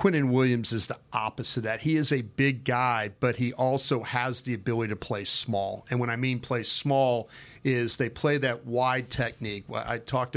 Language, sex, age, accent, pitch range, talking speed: English, male, 40-59, American, 115-130 Hz, 205 wpm